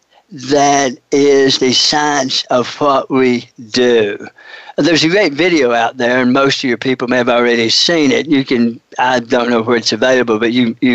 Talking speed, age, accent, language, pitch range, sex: 190 wpm, 60-79, American, English, 125-145 Hz, male